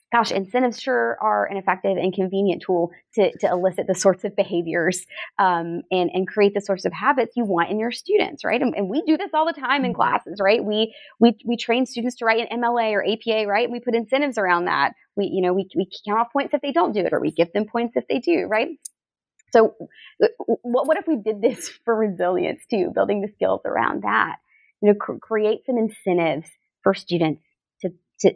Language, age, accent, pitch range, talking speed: English, 20-39, American, 180-235 Hz, 220 wpm